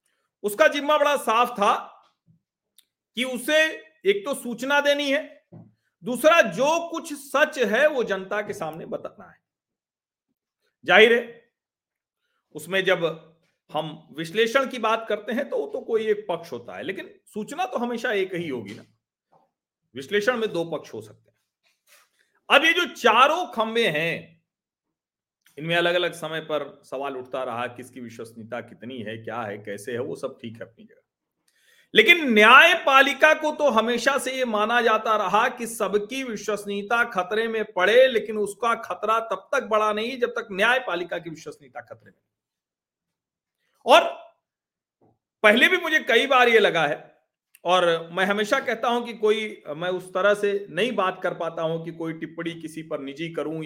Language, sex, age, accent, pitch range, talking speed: Hindi, male, 40-59, native, 170-275 Hz, 165 wpm